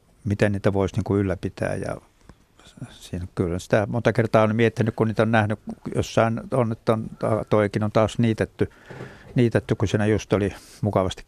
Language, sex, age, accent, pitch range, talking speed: Finnish, male, 60-79, native, 100-115 Hz, 170 wpm